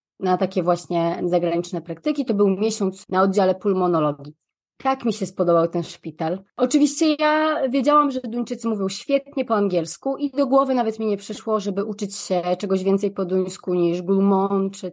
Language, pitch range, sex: Polish, 175-235 Hz, female